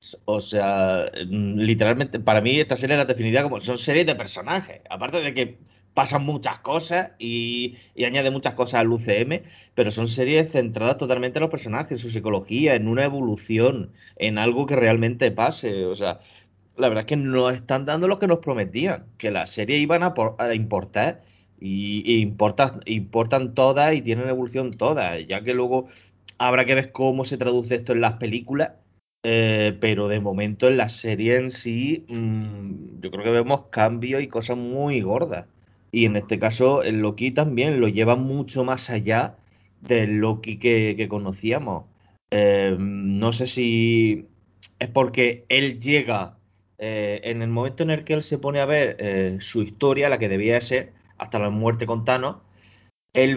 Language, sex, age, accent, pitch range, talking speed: Spanish, male, 30-49, Spanish, 105-130 Hz, 180 wpm